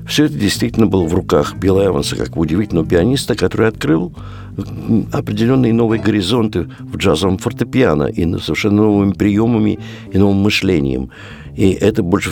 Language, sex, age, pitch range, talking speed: Russian, male, 60-79, 85-110 Hz, 140 wpm